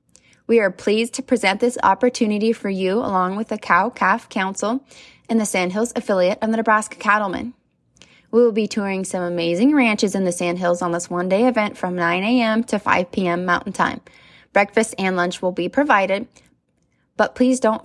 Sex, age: female, 20-39